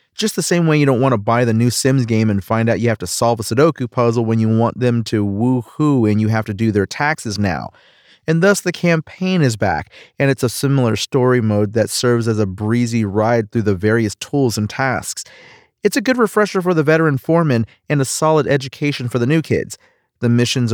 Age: 30-49